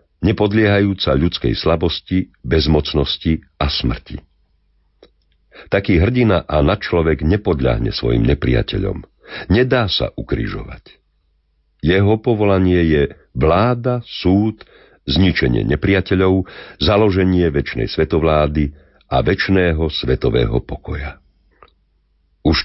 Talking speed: 85 wpm